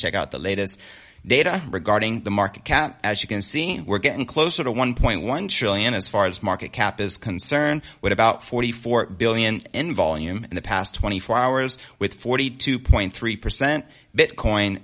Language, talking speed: English, 160 wpm